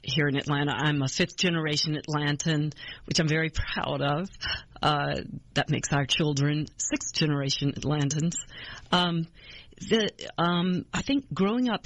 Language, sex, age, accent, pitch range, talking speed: English, female, 50-69, American, 140-155 Hz, 130 wpm